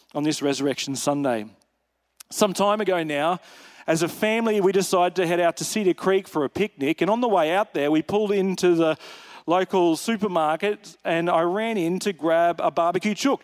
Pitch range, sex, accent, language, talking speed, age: 165-205 Hz, male, Australian, English, 190 wpm, 40-59